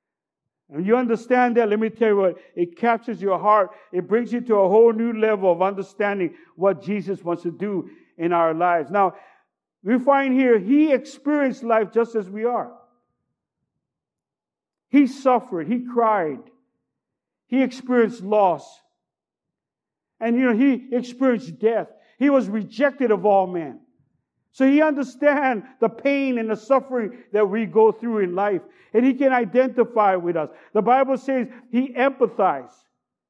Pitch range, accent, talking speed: 210-265 Hz, American, 155 wpm